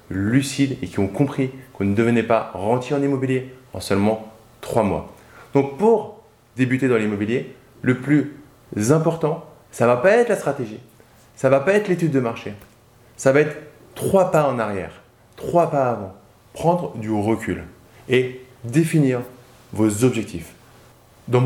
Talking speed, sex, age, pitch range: 160 wpm, male, 20-39, 120-155 Hz